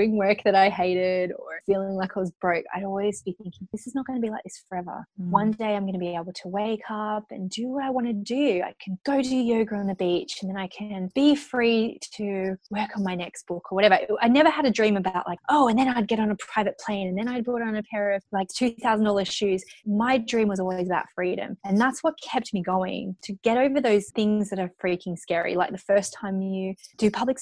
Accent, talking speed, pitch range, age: Australian, 260 wpm, 185-230 Hz, 20-39